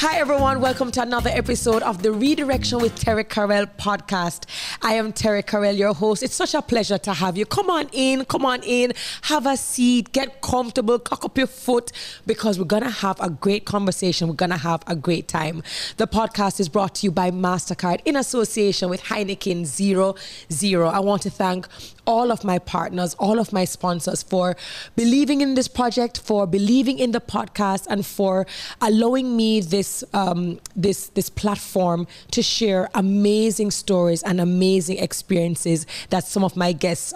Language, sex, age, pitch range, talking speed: English, female, 20-39, 180-235 Hz, 180 wpm